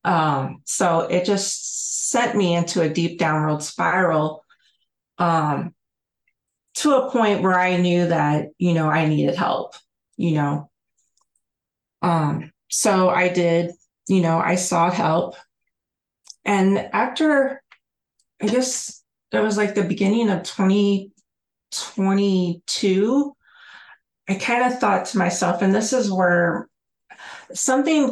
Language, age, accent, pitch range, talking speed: English, 30-49, American, 175-210 Hz, 120 wpm